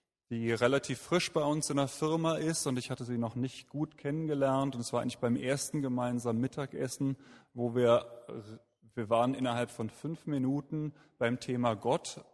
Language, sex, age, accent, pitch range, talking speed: German, male, 30-49, German, 115-135 Hz, 175 wpm